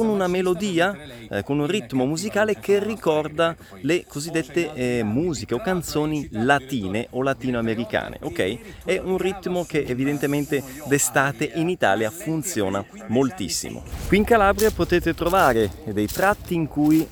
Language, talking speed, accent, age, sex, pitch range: Italian, 135 wpm, native, 30-49, male, 100-155 Hz